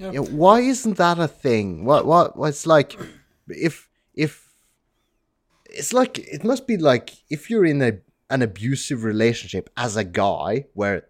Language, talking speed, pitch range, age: English, 185 wpm, 110-155 Hz, 30-49